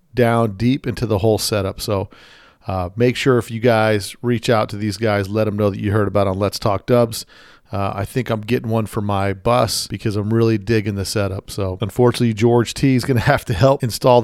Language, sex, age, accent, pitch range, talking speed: English, male, 40-59, American, 105-120 Hz, 230 wpm